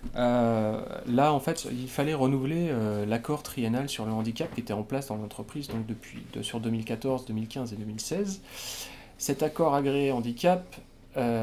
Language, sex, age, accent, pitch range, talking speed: French, male, 40-59, French, 105-135 Hz, 170 wpm